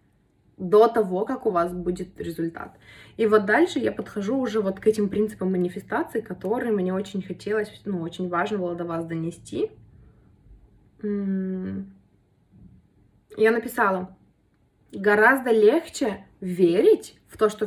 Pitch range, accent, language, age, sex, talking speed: 180-215 Hz, native, Russian, 20-39, female, 125 wpm